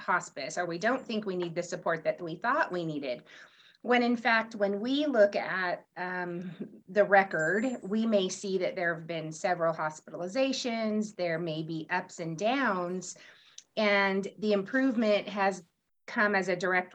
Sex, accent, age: female, American, 30-49